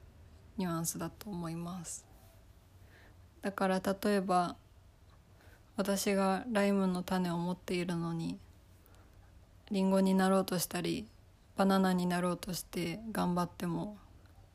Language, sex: Japanese, female